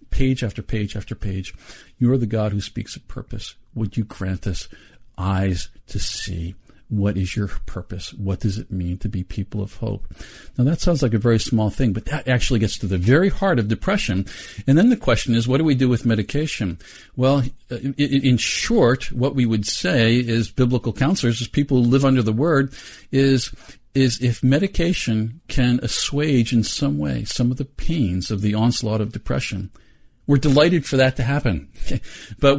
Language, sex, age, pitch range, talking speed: English, male, 50-69, 100-135 Hz, 190 wpm